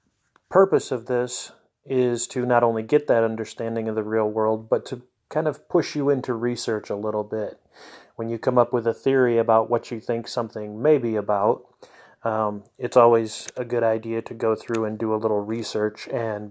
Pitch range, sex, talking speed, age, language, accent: 110-125 Hz, male, 200 wpm, 30-49, English, American